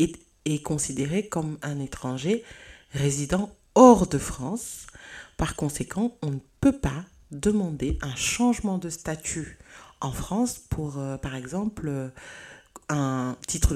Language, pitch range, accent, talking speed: French, 140-195 Hz, French, 120 wpm